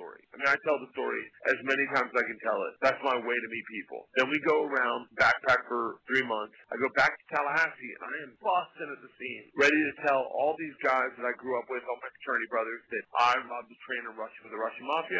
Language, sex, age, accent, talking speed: English, male, 40-59, American, 255 wpm